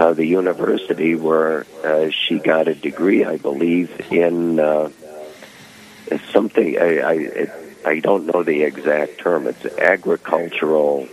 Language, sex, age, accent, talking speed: English, male, 60-79, American, 115 wpm